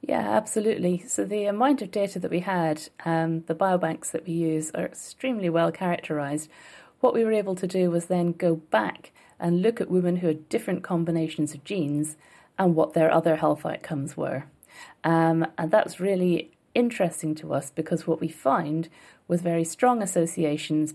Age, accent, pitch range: 40-59, British, 155-180 Hz